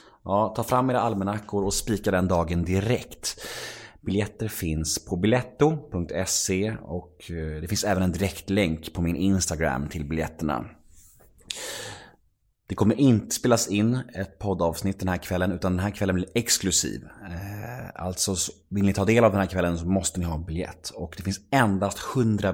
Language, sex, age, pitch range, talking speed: Swedish, male, 30-49, 85-105 Hz, 160 wpm